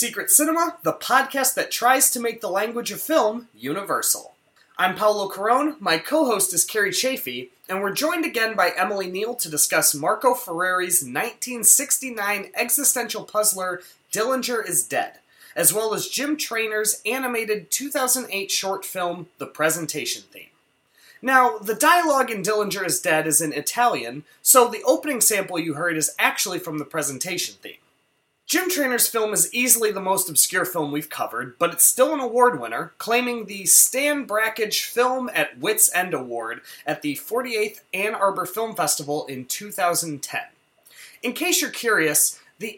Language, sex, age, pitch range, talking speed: English, male, 30-49, 180-250 Hz, 155 wpm